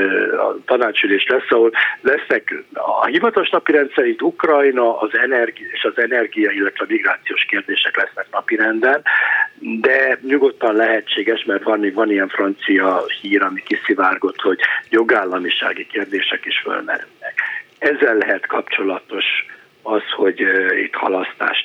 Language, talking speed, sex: Hungarian, 120 wpm, male